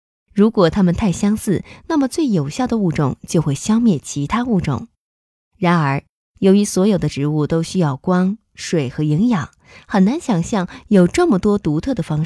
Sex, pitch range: female, 150-225 Hz